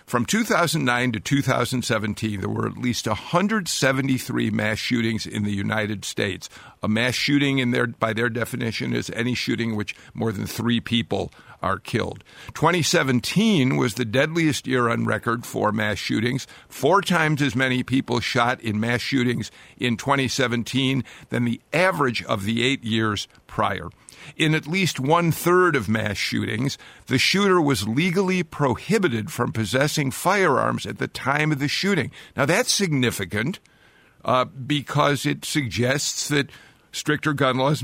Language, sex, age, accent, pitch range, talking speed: English, male, 50-69, American, 115-150 Hz, 150 wpm